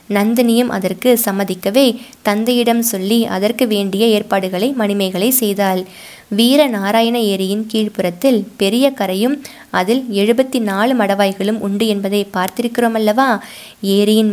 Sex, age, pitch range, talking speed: female, 20-39, 200-245 Hz, 95 wpm